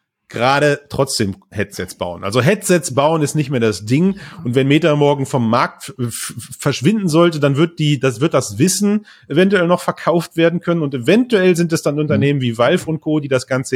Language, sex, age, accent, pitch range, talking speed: German, male, 30-49, German, 125-170 Hz, 205 wpm